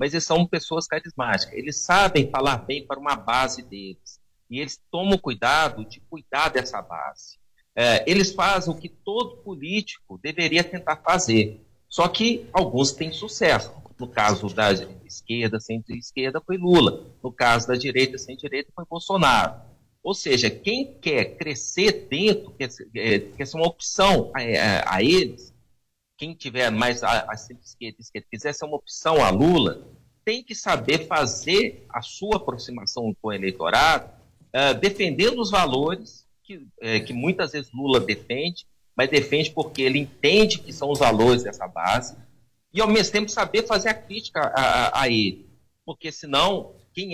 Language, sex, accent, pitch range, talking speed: Portuguese, male, Brazilian, 125-185 Hz, 150 wpm